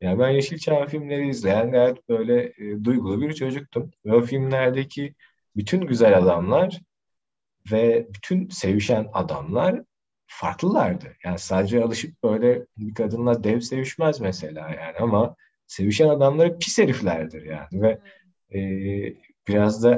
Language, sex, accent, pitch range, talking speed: Turkish, male, native, 95-150 Hz, 120 wpm